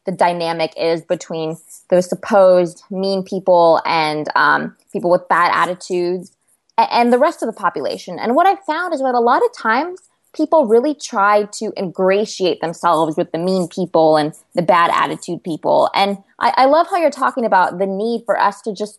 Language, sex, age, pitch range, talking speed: English, female, 20-39, 175-225 Hz, 185 wpm